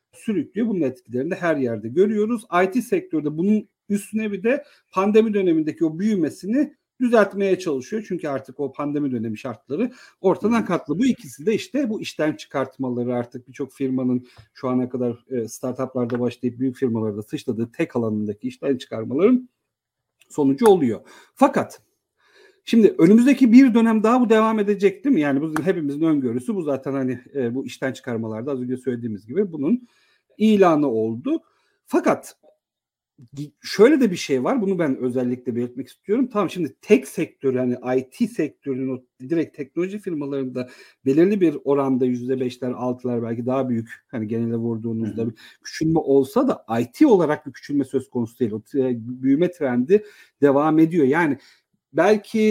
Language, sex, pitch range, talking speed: Turkish, male, 130-205 Hz, 150 wpm